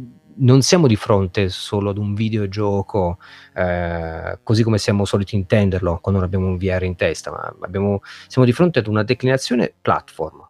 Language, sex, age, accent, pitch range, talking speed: Italian, male, 30-49, native, 95-120 Hz, 160 wpm